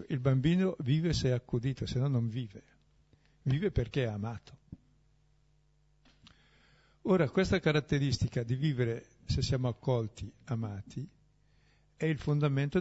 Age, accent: 60-79, native